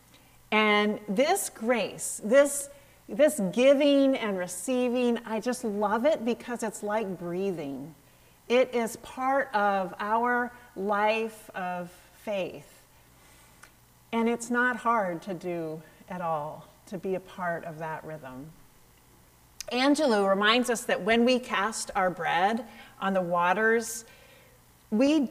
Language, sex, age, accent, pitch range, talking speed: English, female, 40-59, American, 180-245 Hz, 125 wpm